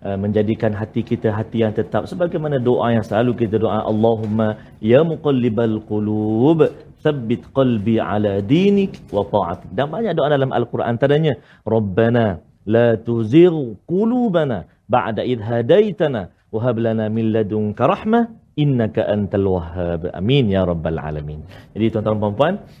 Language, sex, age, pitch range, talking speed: Malayalam, male, 40-59, 110-165 Hz, 135 wpm